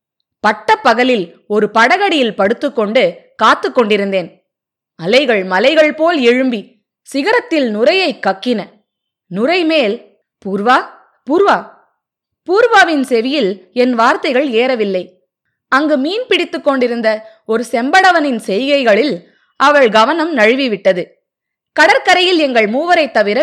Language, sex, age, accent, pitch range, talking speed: Tamil, female, 20-39, native, 215-315 Hz, 90 wpm